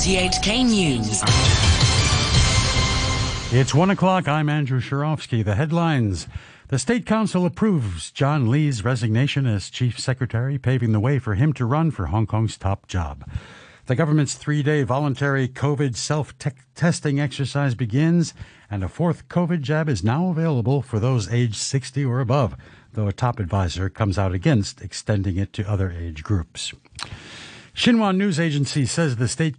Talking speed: 150 wpm